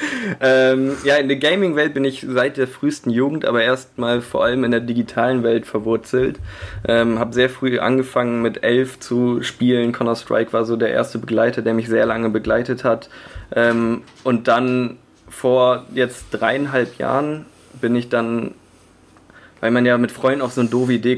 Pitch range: 115-125 Hz